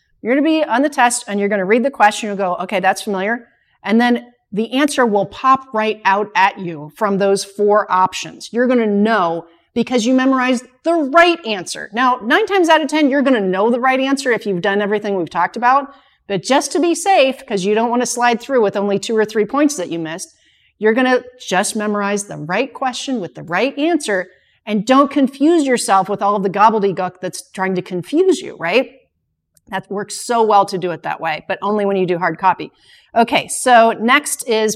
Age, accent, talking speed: 40-59, American, 225 wpm